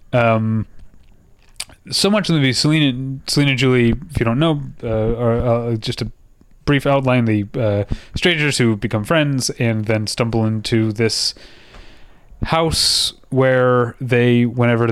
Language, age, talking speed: English, 30-49, 145 wpm